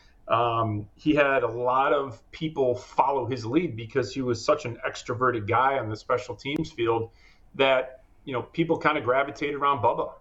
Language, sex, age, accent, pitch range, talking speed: English, male, 40-59, American, 115-140 Hz, 180 wpm